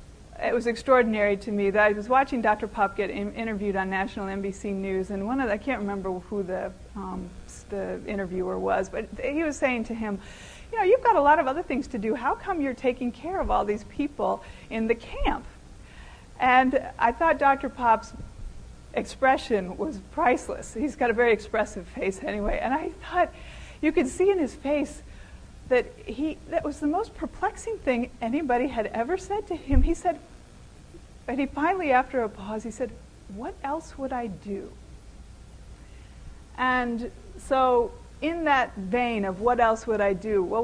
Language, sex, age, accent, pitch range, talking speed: English, female, 40-59, American, 210-275 Hz, 180 wpm